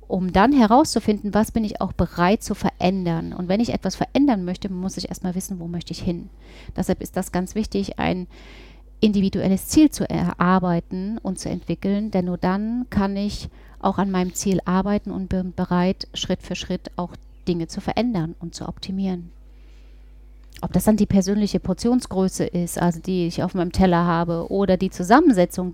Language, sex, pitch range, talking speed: German, female, 175-195 Hz, 180 wpm